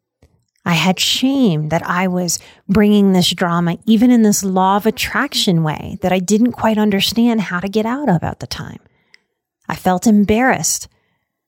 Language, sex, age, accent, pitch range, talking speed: English, female, 30-49, American, 185-245 Hz, 165 wpm